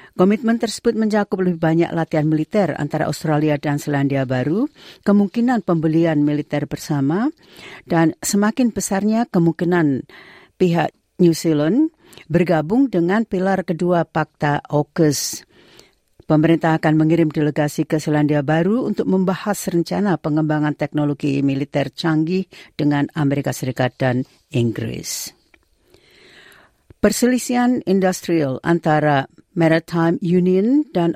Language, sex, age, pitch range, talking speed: Indonesian, female, 50-69, 150-190 Hz, 105 wpm